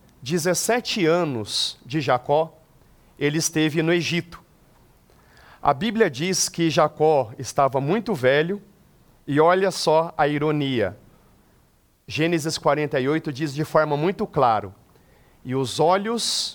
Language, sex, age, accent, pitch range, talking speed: Portuguese, male, 50-69, Brazilian, 135-170 Hz, 110 wpm